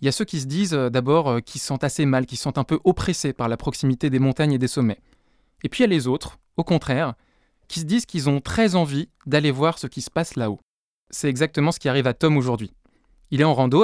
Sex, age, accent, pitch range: male, 20-39, French, 135-175 Hz